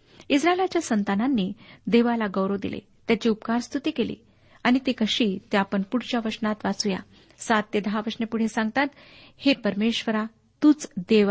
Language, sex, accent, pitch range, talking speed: Marathi, female, native, 210-250 Hz, 140 wpm